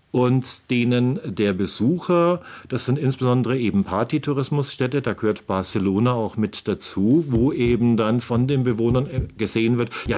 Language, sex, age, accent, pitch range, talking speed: German, male, 50-69, German, 110-135 Hz, 140 wpm